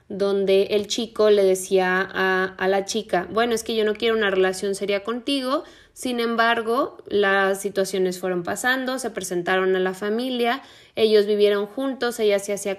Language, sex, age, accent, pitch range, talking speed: Spanish, female, 20-39, Mexican, 195-230 Hz, 170 wpm